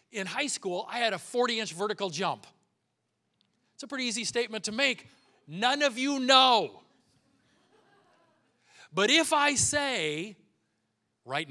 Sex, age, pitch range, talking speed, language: male, 40-59, 130-215 Hz, 130 wpm, English